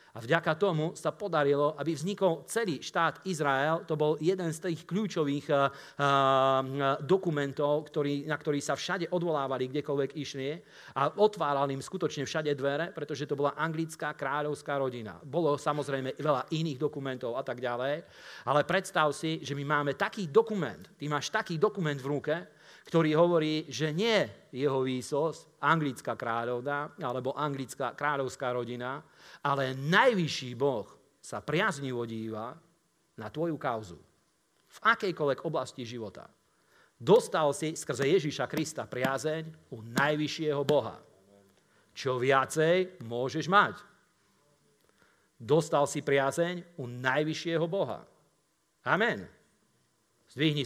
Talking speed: 125 wpm